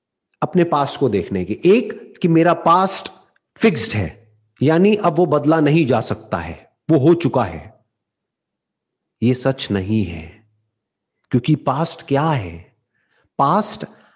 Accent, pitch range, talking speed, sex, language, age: native, 145-205 Hz, 135 wpm, male, Hindi, 40-59